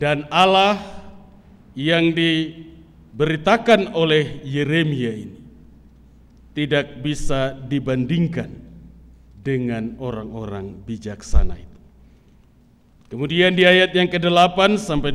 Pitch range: 130-195 Hz